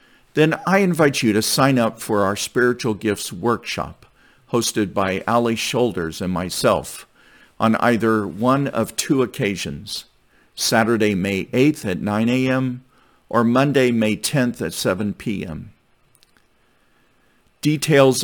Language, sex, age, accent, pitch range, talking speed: English, male, 50-69, American, 105-135 Hz, 125 wpm